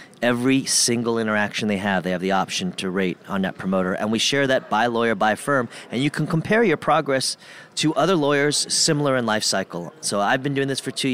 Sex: male